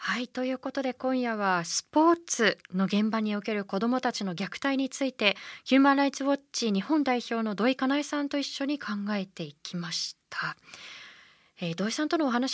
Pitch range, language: 185-275 Hz, Japanese